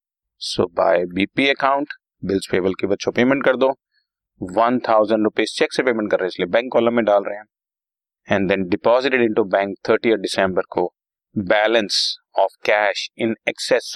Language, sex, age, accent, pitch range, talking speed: Hindi, male, 40-59, native, 105-170 Hz, 170 wpm